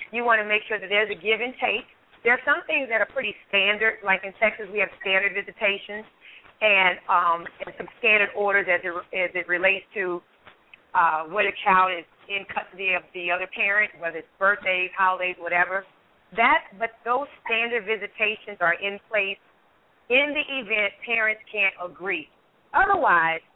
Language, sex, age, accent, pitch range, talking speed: English, female, 30-49, American, 190-235 Hz, 175 wpm